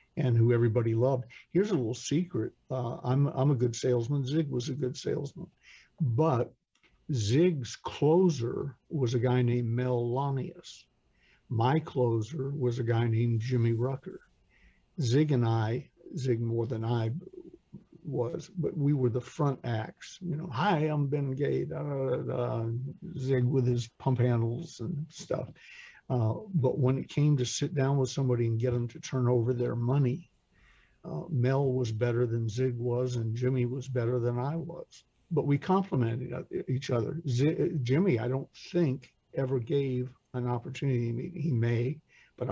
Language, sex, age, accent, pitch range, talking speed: English, male, 50-69, American, 120-145 Hz, 160 wpm